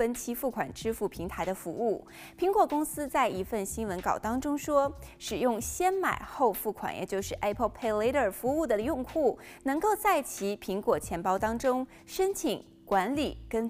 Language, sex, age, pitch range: Chinese, female, 20-39, 200-300 Hz